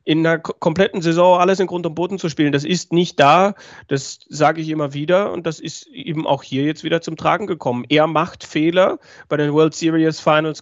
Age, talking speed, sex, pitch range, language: 40-59, 220 wpm, male, 145-175 Hz, German